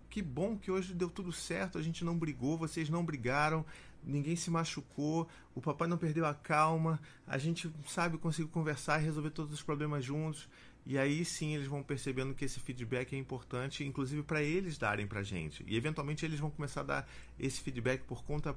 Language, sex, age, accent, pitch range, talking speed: Portuguese, male, 40-59, Brazilian, 125-160 Hz, 205 wpm